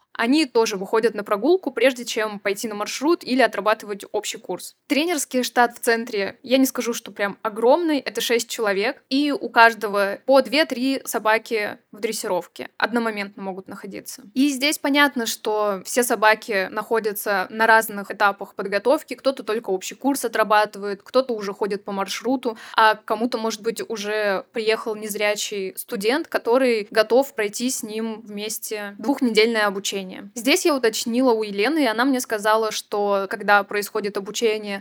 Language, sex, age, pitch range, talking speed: Russian, female, 10-29, 210-250 Hz, 150 wpm